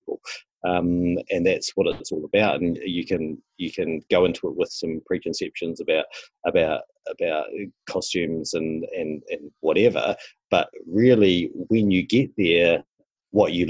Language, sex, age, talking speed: English, male, 40-59, 150 wpm